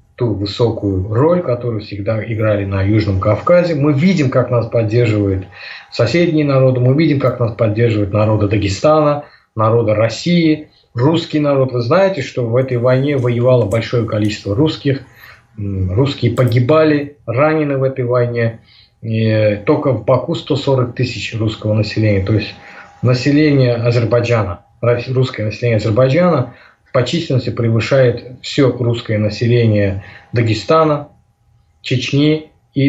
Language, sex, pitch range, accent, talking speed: Russian, male, 110-135 Hz, native, 120 wpm